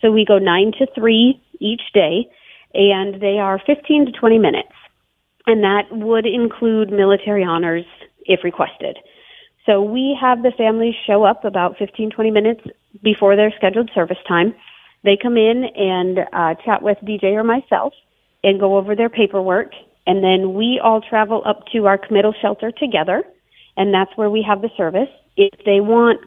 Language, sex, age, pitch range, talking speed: English, female, 40-59, 190-225 Hz, 170 wpm